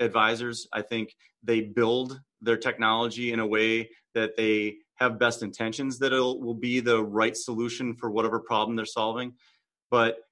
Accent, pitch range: American, 110-125 Hz